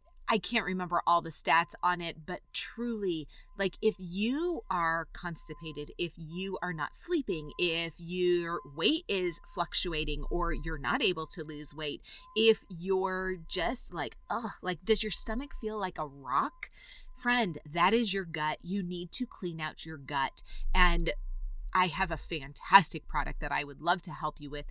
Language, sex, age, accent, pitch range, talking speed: English, female, 30-49, American, 160-215 Hz, 170 wpm